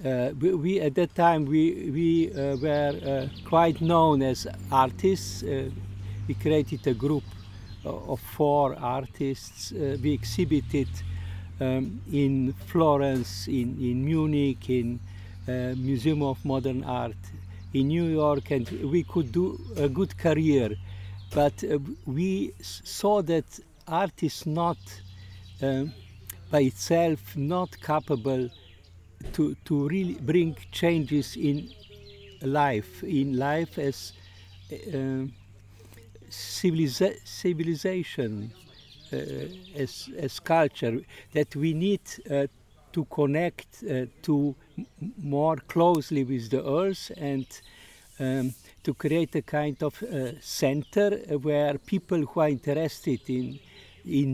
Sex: male